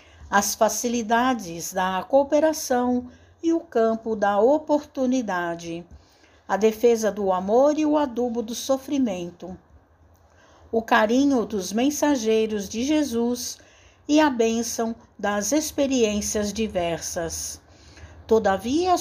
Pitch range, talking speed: 200-280 Hz, 100 wpm